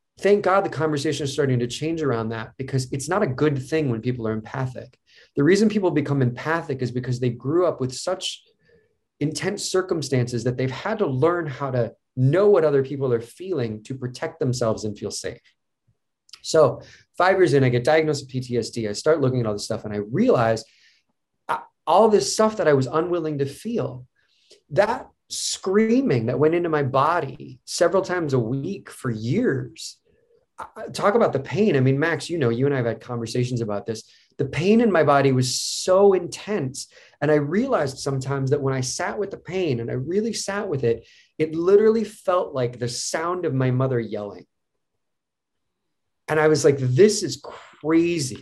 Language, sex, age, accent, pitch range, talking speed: English, male, 30-49, American, 125-185 Hz, 190 wpm